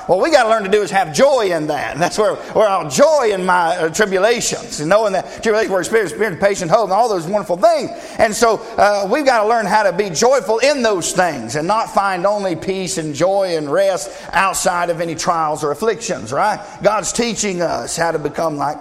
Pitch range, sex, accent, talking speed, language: 175-220 Hz, male, American, 235 wpm, English